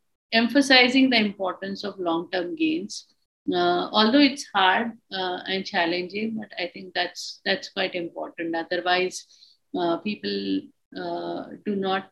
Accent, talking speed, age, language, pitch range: Indian, 135 wpm, 50-69, English, 170-245 Hz